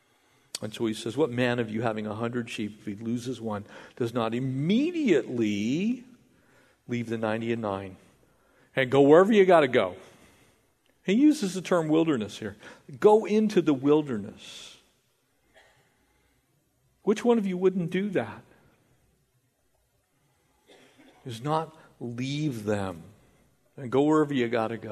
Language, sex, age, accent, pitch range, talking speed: English, male, 50-69, American, 115-185 Hz, 140 wpm